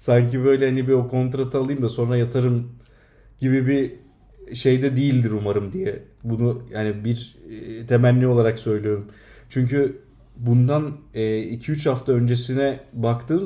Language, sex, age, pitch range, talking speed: Turkish, male, 40-59, 115-130 Hz, 125 wpm